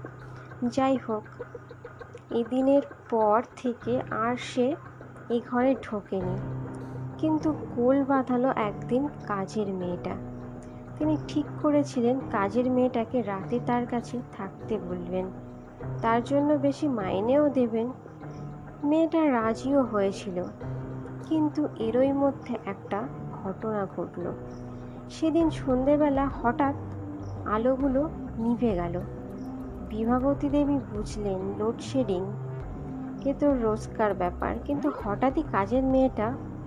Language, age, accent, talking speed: Bengali, 30-49, native, 90 wpm